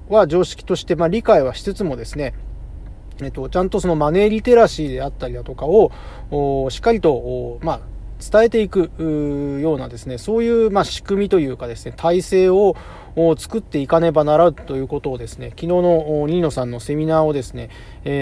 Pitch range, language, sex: 130-185 Hz, Japanese, male